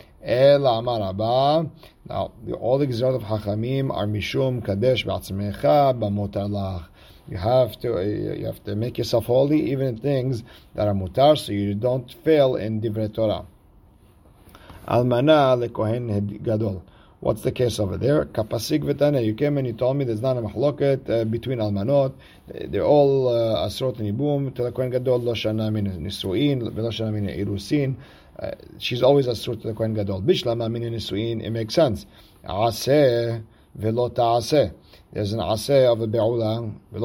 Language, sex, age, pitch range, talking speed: English, male, 50-69, 105-125 Hz, 140 wpm